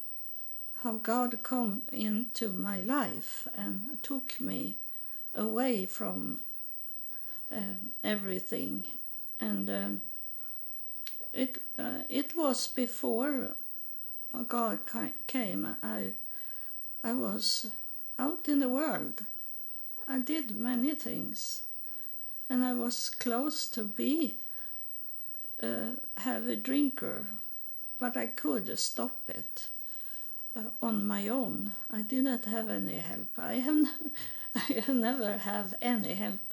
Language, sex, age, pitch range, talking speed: English, female, 50-69, 210-260 Hz, 110 wpm